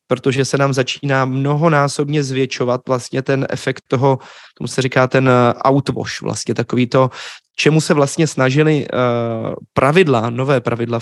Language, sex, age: Czech, male, 20-39